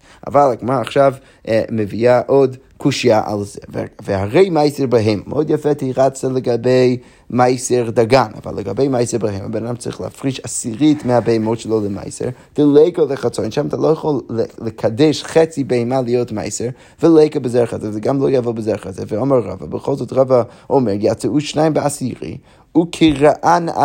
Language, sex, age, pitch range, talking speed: Hebrew, male, 30-49, 115-150 Hz, 155 wpm